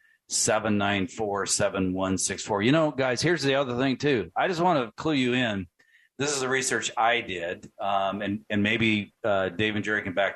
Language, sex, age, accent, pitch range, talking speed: English, male, 40-59, American, 110-130 Hz, 220 wpm